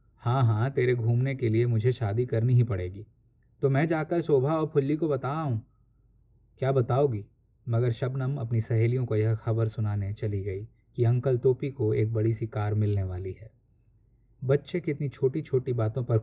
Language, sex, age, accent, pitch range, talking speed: Hindi, male, 20-39, native, 110-130 Hz, 180 wpm